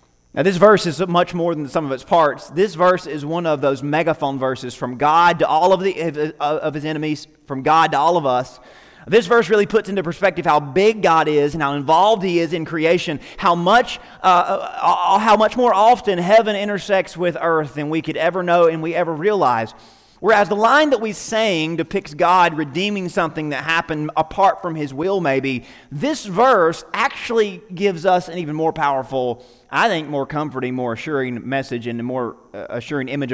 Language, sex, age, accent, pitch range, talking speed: English, male, 30-49, American, 155-210 Hz, 200 wpm